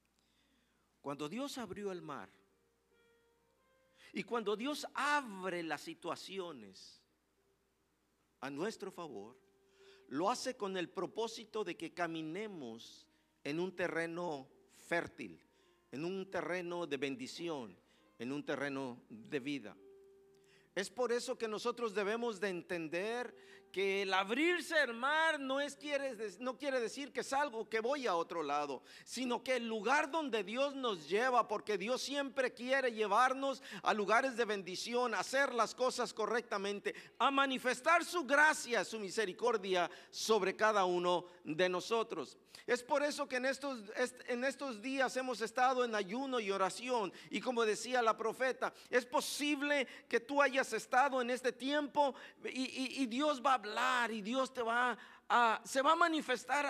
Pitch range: 195-270 Hz